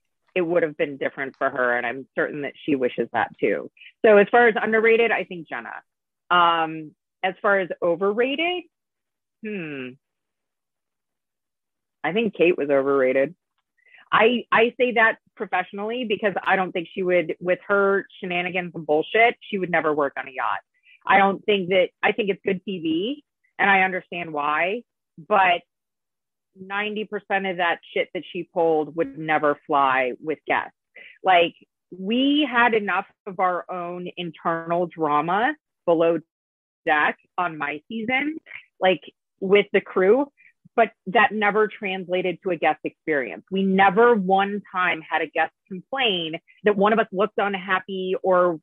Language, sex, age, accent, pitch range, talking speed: English, female, 30-49, American, 170-215 Hz, 155 wpm